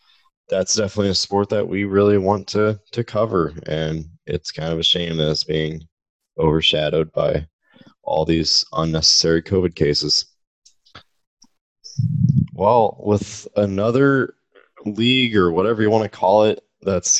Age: 20-39